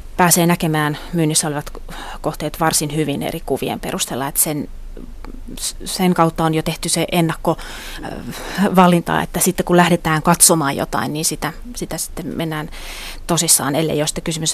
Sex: female